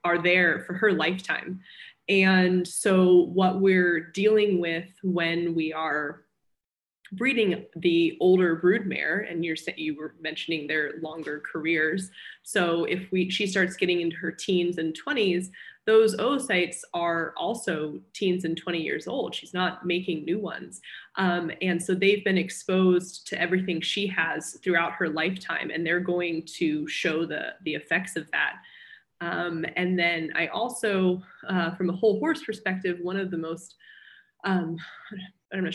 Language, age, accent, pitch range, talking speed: English, 20-39, American, 165-190 Hz, 155 wpm